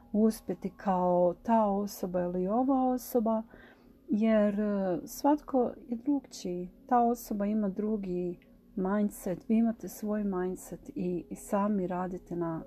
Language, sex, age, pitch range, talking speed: Croatian, female, 40-59, 185-235 Hz, 120 wpm